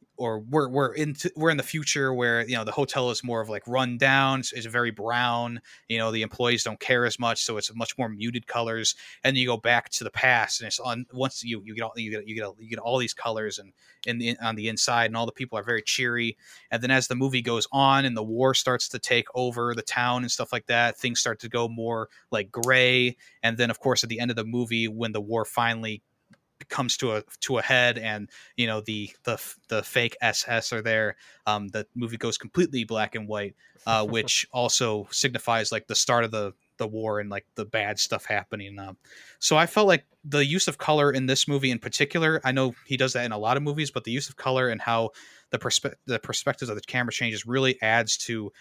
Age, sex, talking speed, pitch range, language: 20-39, male, 245 wpm, 115-130 Hz, English